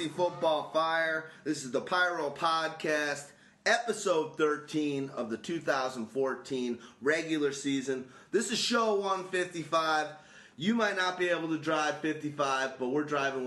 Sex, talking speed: male, 130 wpm